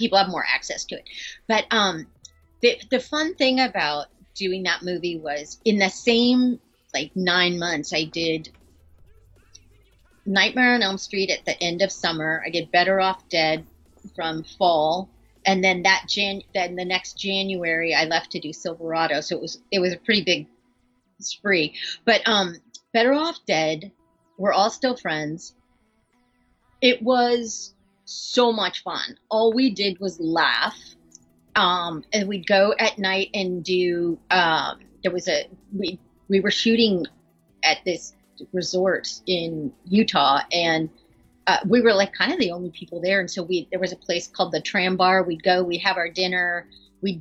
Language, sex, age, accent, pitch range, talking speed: English, female, 30-49, American, 165-195 Hz, 170 wpm